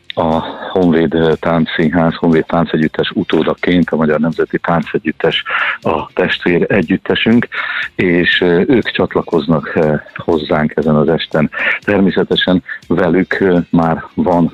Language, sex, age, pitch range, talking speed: Hungarian, male, 50-69, 80-95 Hz, 110 wpm